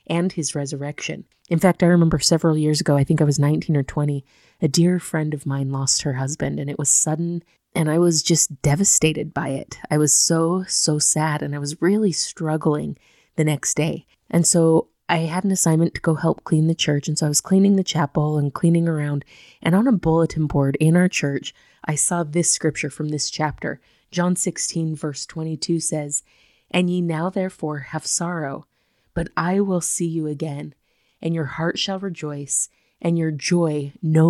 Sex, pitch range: female, 150-175 Hz